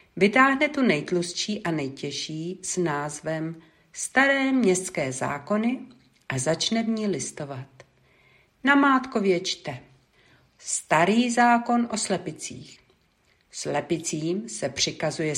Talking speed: 100 wpm